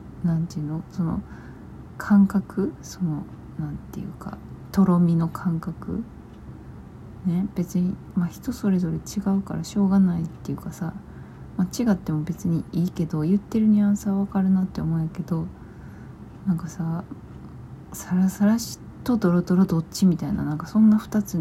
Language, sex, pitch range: Japanese, female, 155-195 Hz